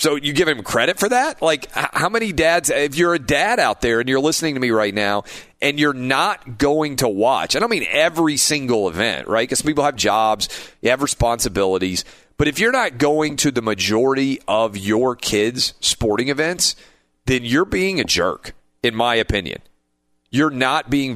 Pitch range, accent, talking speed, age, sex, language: 105-155 Hz, American, 195 wpm, 40-59, male, English